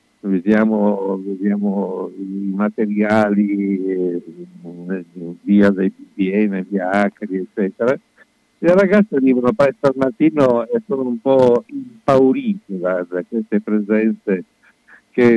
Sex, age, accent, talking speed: male, 60-79, native, 95 wpm